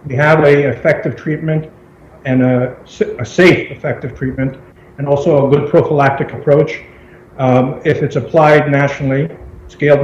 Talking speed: 135 wpm